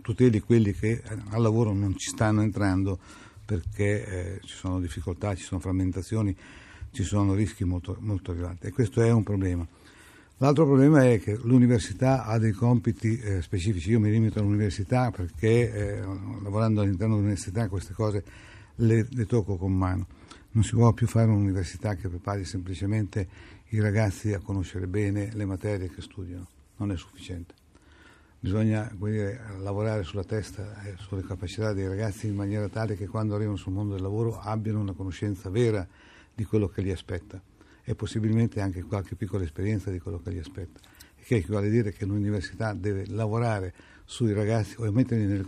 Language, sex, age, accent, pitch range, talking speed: Italian, male, 60-79, native, 95-110 Hz, 165 wpm